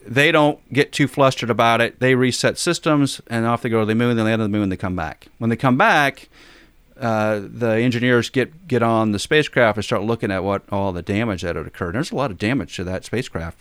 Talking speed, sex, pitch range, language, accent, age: 250 wpm, male, 105-130 Hz, English, American, 40-59